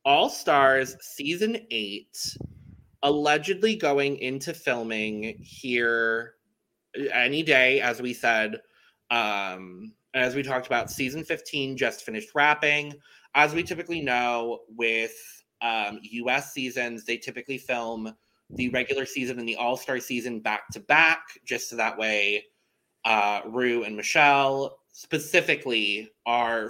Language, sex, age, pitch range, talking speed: English, male, 20-39, 120-145 Hz, 115 wpm